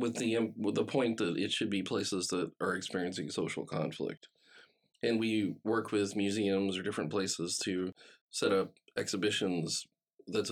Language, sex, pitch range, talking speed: English, male, 90-105 Hz, 165 wpm